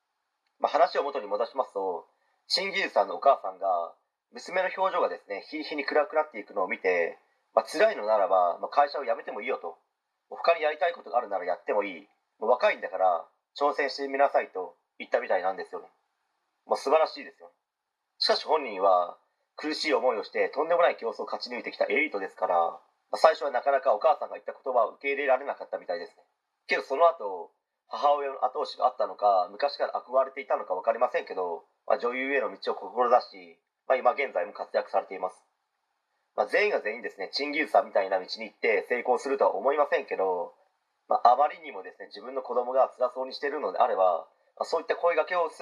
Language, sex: Japanese, male